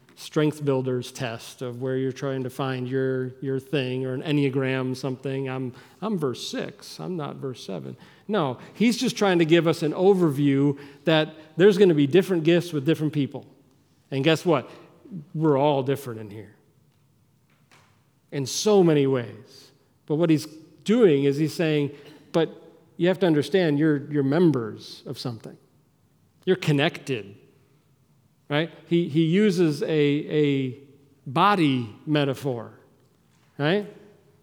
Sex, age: male, 40-59